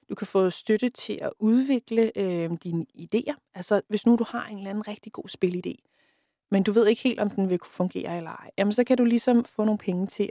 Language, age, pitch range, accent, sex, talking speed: Danish, 30-49, 175-235 Hz, native, female, 235 wpm